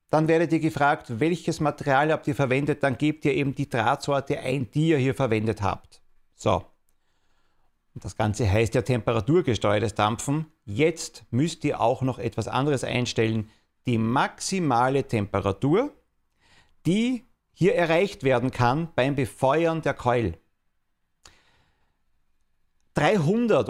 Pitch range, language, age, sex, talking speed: 110-160 Hz, German, 40-59, male, 125 wpm